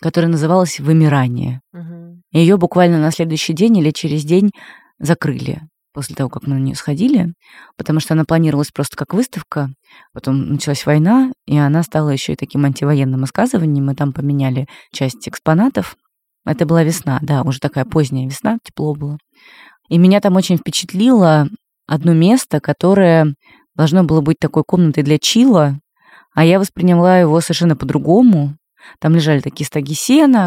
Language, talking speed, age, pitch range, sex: Russian, 155 wpm, 20-39, 145-175 Hz, female